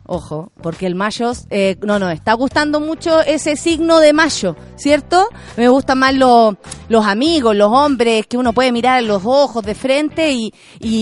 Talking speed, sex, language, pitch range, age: 180 wpm, female, Spanish, 220-290 Hz, 30-49